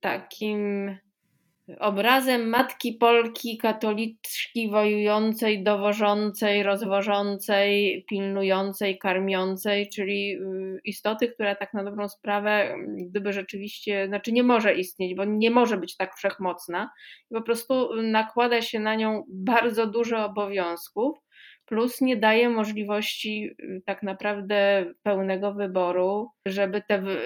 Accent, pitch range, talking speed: native, 190-220 Hz, 105 wpm